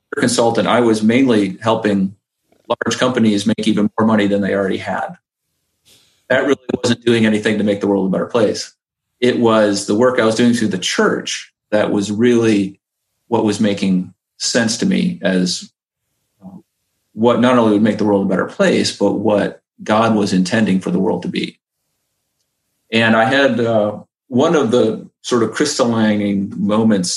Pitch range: 105-125 Hz